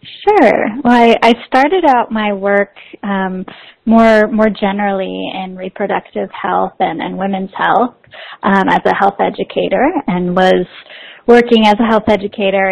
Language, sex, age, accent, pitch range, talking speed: English, female, 10-29, American, 195-235 Hz, 145 wpm